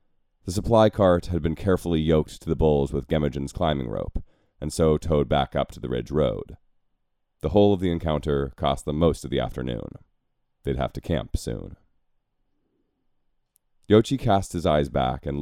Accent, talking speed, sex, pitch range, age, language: American, 175 wpm, male, 70-85 Hz, 30-49, English